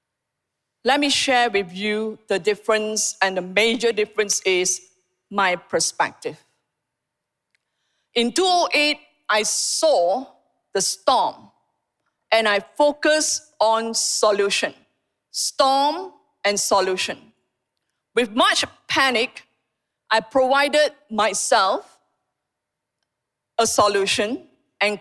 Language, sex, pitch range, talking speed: English, female, 210-295 Hz, 90 wpm